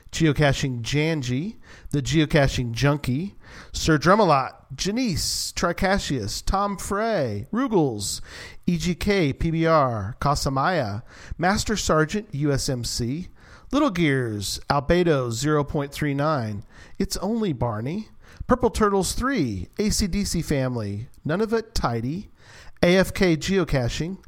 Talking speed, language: 90 wpm, English